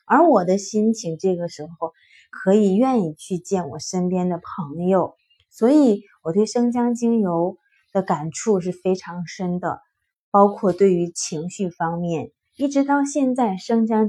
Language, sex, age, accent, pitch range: Chinese, female, 20-39, native, 170-215 Hz